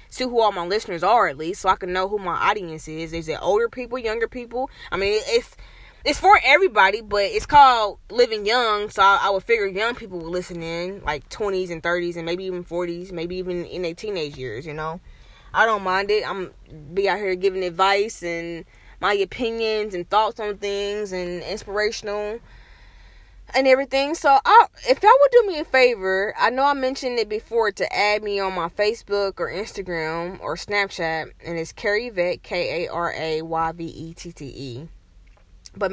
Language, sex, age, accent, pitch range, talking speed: English, female, 20-39, American, 170-240 Hz, 185 wpm